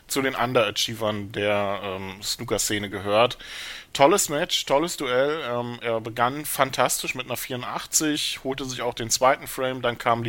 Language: German